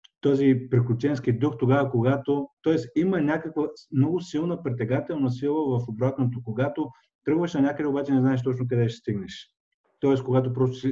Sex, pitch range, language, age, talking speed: male, 120-135 Hz, Bulgarian, 50-69, 155 wpm